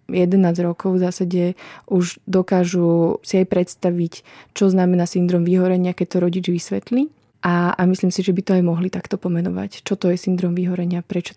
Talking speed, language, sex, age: 180 wpm, Slovak, female, 20-39